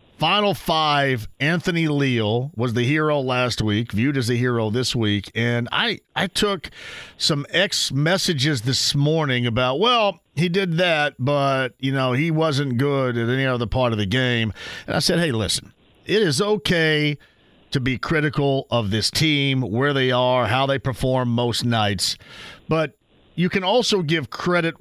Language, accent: English, American